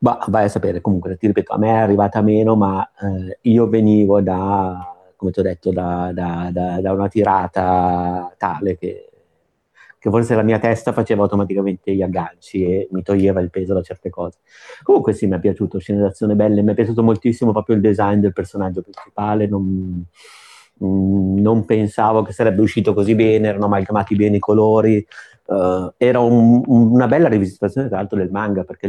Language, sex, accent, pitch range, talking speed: Italian, male, native, 95-105 Hz, 180 wpm